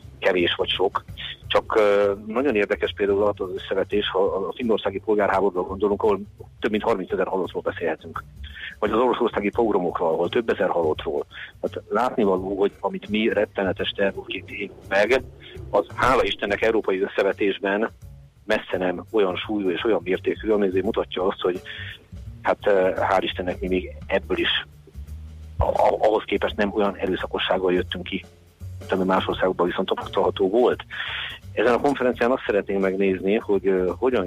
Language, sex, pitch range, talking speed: Hungarian, male, 95-110 Hz, 145 wpm